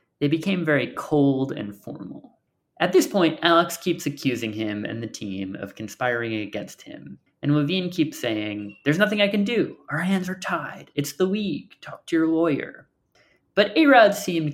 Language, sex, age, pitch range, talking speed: English, male, 30-49, 105-165 Hz, 180 wpm